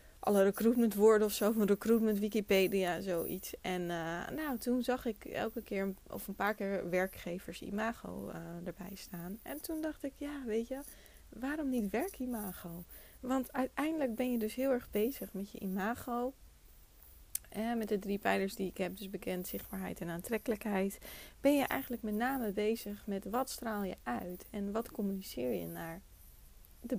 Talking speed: 170 wpm